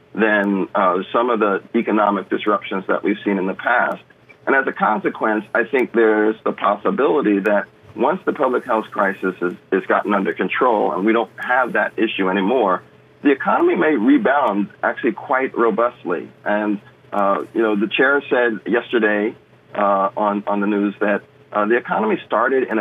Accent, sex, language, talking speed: American, male, English, 170 wpm